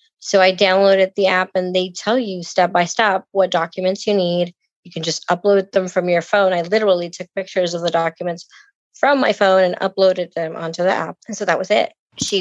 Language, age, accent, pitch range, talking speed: English, 30-49, American, 170-200 Hz, 220 wpm